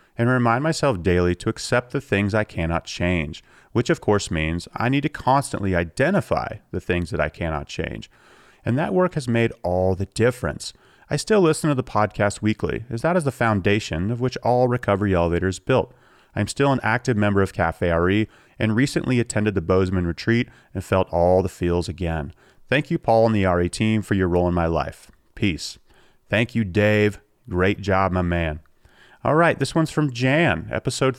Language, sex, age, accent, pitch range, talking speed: English, male, 30-49, American, 90-125 Hz, 190 wpm